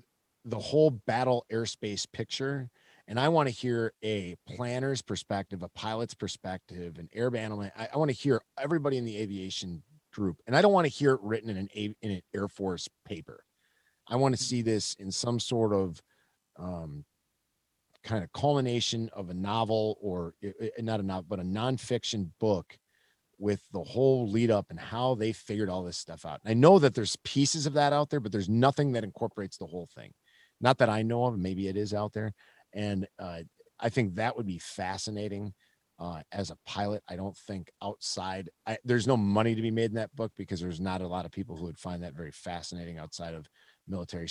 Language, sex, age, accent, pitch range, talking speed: English, male, 40-59, American, 90-120 Hz, 200 wpm